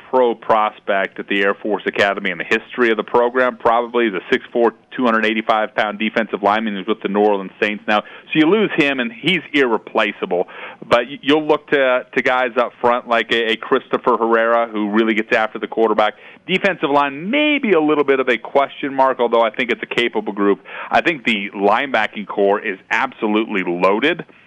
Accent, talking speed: American, 190 wpm